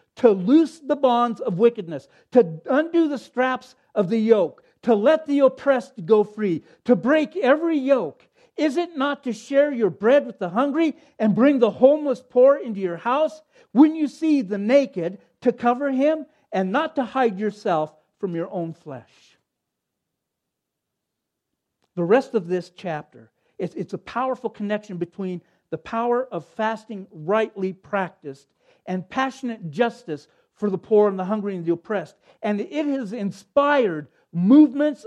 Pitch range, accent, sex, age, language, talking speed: 180-265 Hz, American, male, 50-69, English, 155 wpm